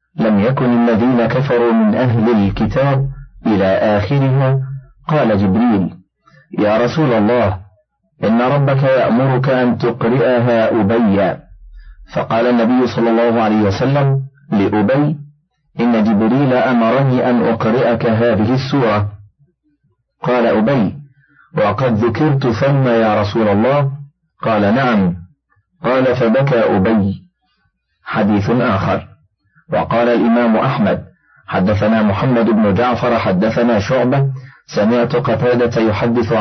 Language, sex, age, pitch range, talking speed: Arabic, male, 40-59, 110-135 Hz, 100 wpm